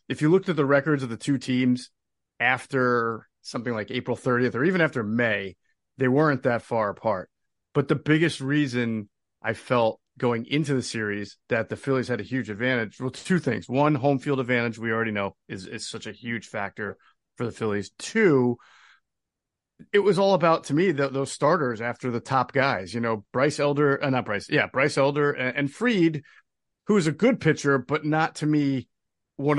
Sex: male